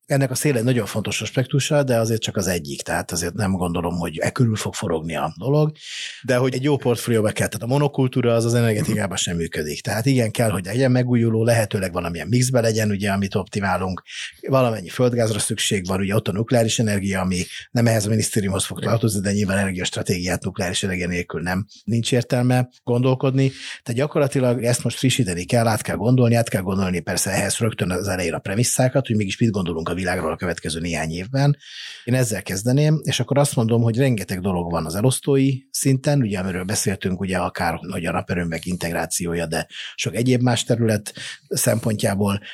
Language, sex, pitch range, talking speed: Hungarian, male, 95-120 Hz, 190 wpm